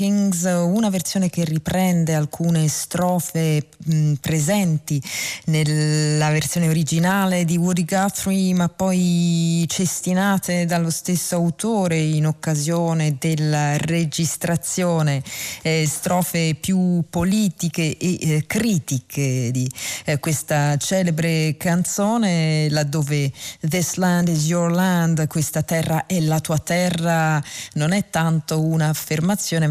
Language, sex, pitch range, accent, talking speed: Italian, female, 150-180 Hz, native, 105 wpm